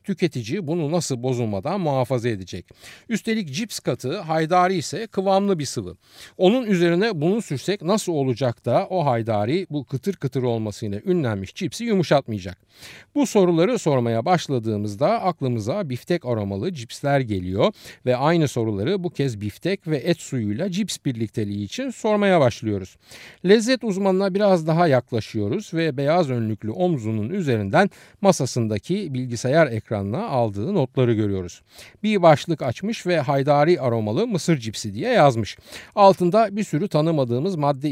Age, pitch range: 50-69, 115-180 Hz